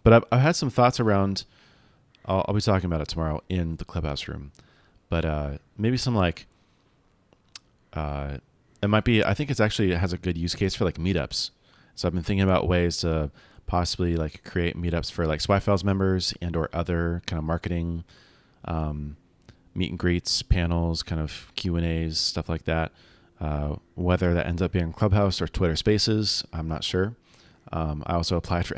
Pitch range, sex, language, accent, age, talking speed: 80-95 Hz, male, English, American, 30-49, 190 wpm